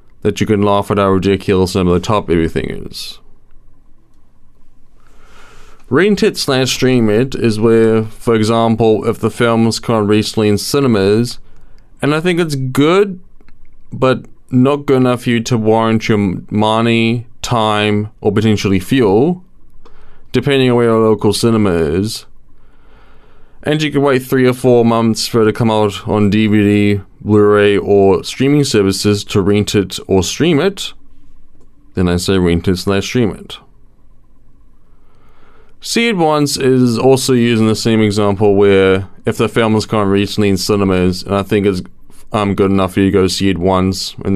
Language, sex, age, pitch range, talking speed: English, male, 20-39, 95-120 Hz, 160 wpm